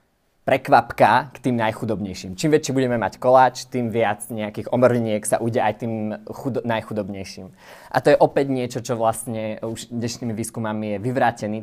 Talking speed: 160 wpm